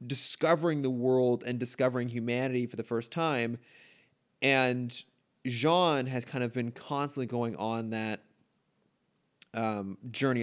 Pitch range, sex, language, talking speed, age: 115-135 Hz, male, English, 125 wpm, 20-39